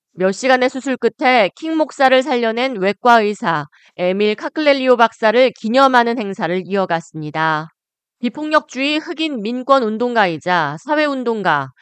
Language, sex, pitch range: Korean, female, 185-260 Hz